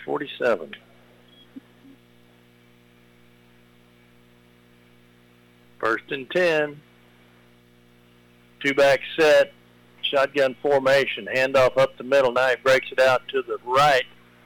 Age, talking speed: 50-69, 85 wpm